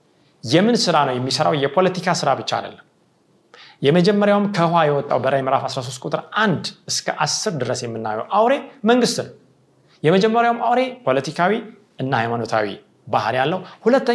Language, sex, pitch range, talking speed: Amharic, male, 135-220 Hz, 120 wpm